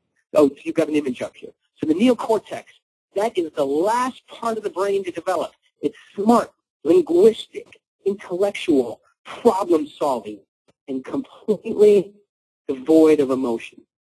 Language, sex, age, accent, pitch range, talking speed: English, male, 50-69, American, 140-205 Hz, 125 wpm